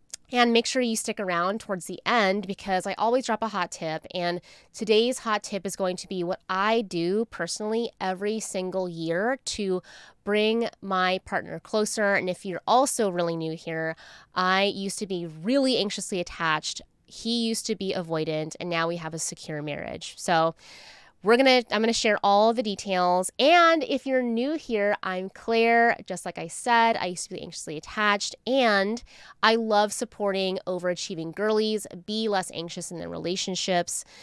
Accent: American